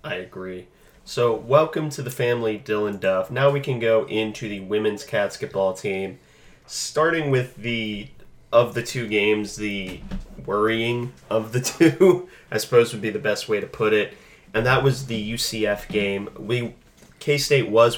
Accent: American